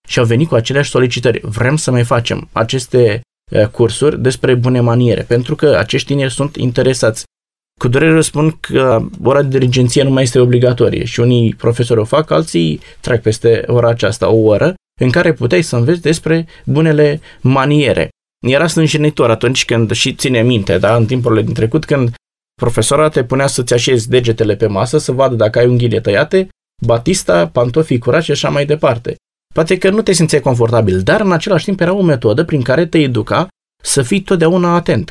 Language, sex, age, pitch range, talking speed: Romanian, male, 20-39, 120-155 Hz, 185 wpm